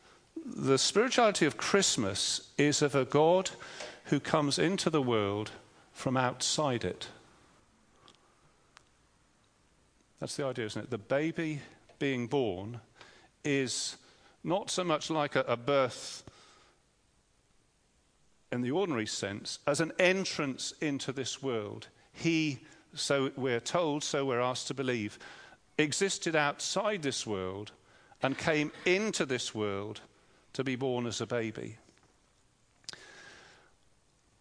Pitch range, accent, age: 120-155 Hz, British, 40-59